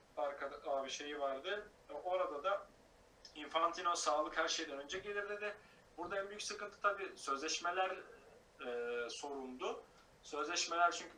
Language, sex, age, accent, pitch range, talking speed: Turkish, male, 40-59, native, 140-185 Hz, 130 wpm